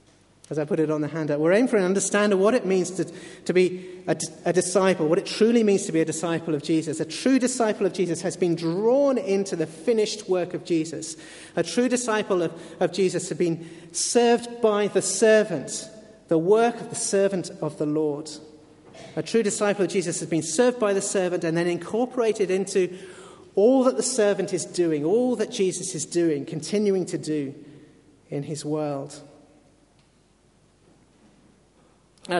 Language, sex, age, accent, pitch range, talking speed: English, male, 40-59, British, 155-195 Hz, 185 wpm